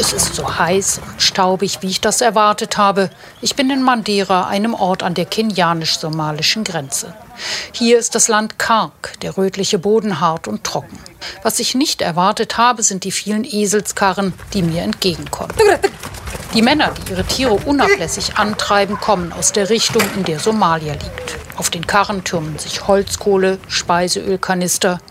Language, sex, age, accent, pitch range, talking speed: German, female, 60-79, German, 180-225 Hz, 160 wpm